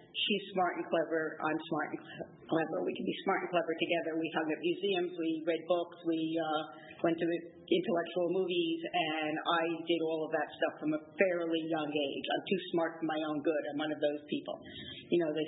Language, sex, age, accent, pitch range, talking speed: English, female, 50-69, American, 160-190 Hz, 215 wpm